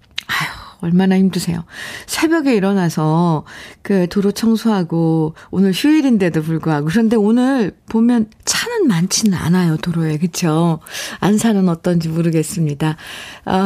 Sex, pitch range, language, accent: female, 170-215 Hz, Korean, native